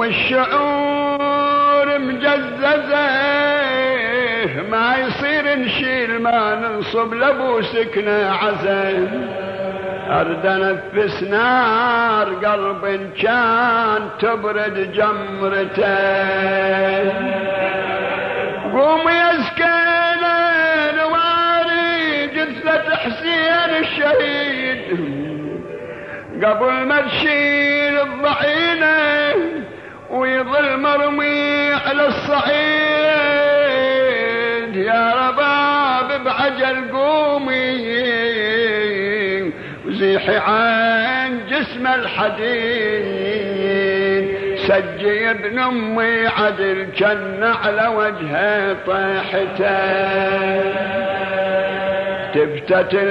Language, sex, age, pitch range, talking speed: Arabic, male, 60-79, 195-285 Hz, 55 wpm